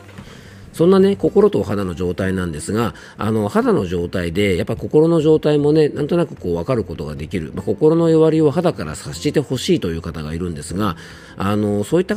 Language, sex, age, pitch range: Japanese, male, 40-59, 95-155 Hz